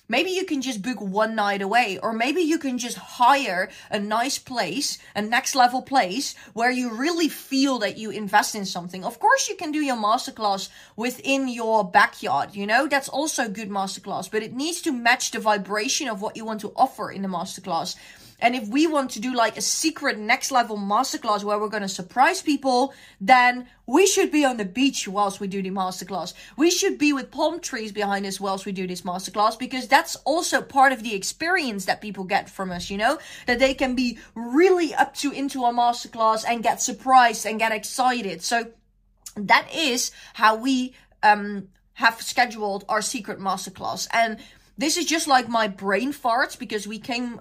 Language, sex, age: Dutch, female, 30-49